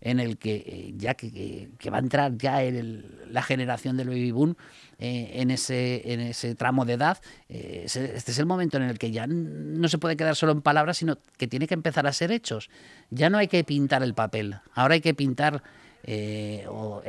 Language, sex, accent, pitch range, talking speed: Spanish, male, Spanish, 115-145 Hz, 215 wpm